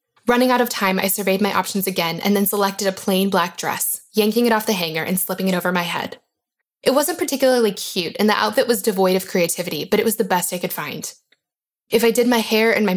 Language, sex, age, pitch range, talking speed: English, female, 20-39, 180-215 Hz, 245 wpm